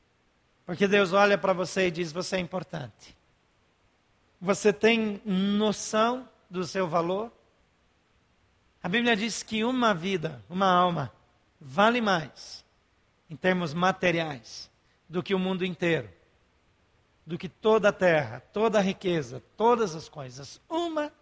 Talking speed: 130 wpm